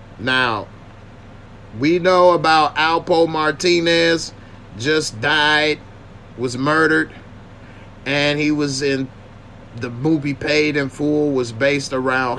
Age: 30-49